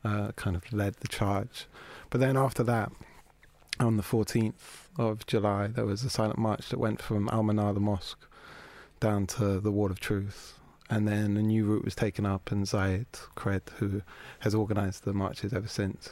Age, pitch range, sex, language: 30-49, 100-120 Hz, male, English